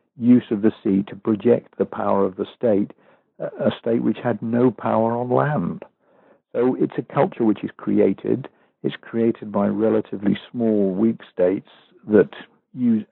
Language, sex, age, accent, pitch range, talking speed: English, male, 60-79, British, 105-115 Hz, 160 wpm